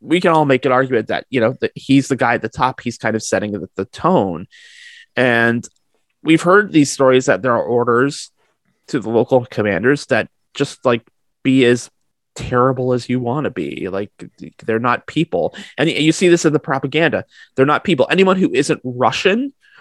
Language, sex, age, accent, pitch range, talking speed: English, male, 30-49, American, 115-155 Hz, 190 wpm